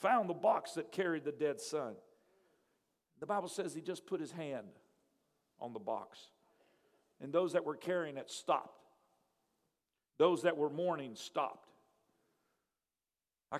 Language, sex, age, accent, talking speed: English, male, 50-69, American, 140 wpm